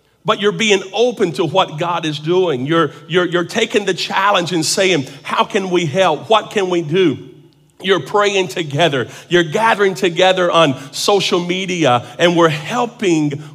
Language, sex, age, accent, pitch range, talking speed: English, male, 50-69, American, 140-185 Hz, 165 wpm